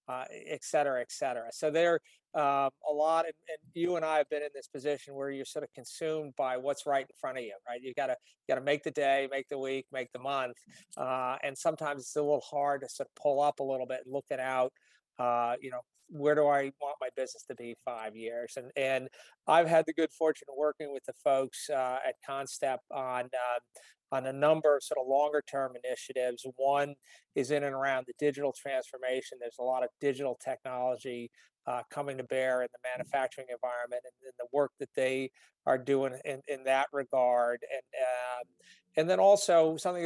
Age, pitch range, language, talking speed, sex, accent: 40-59, 130-150 Hz, English, 220 wpm, male, American